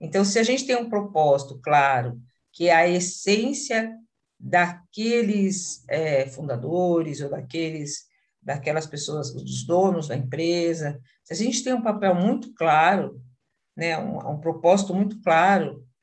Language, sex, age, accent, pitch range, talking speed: Portuguese, female, 50-69, Brazilian, 145-205 Hz, 140 wpm